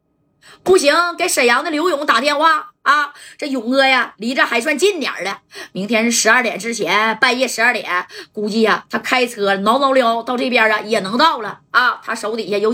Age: 20-39